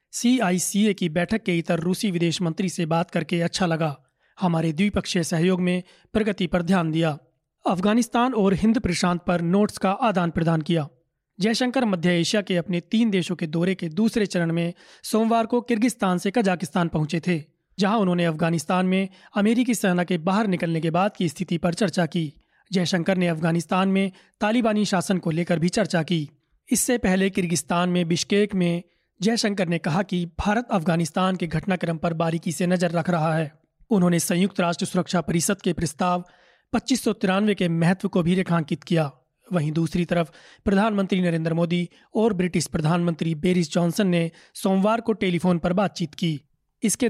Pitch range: 170-200 Hz